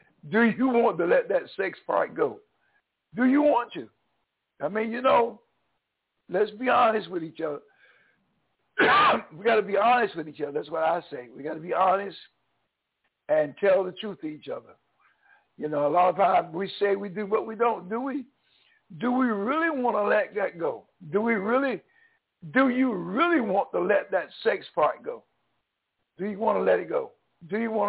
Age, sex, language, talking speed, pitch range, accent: 60-79, male, English, 200 wpm, 185-260 Hz, American